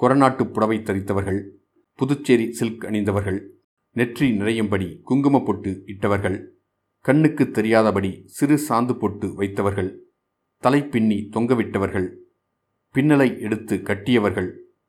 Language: Tamil